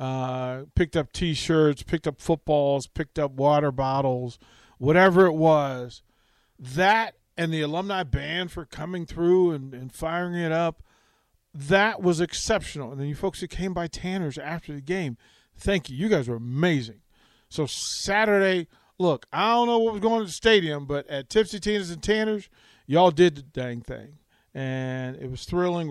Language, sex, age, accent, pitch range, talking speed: English, male, 40-59, American, 125-175 Hz, 170 wpm